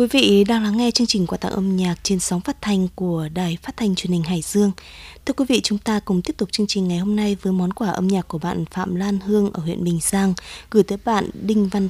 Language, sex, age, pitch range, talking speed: Vietnamese, female, 20-39, 175-215 Hz, 275 wpm